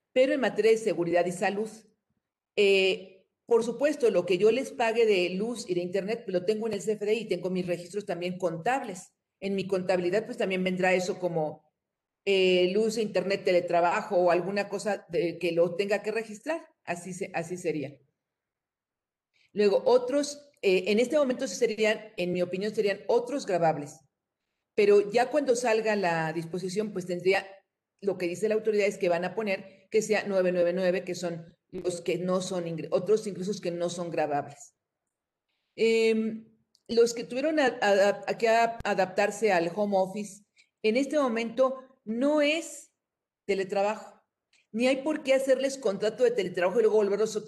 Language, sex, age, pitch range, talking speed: Spanish, female, 40-59, 185-225 Hz, 160 wpm